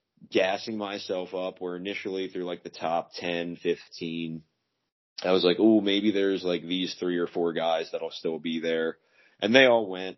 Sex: male